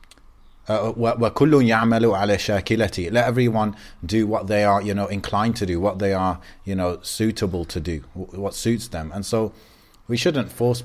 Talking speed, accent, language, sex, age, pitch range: 155 wpm, British, English, male, 30-49, 90-105 Hz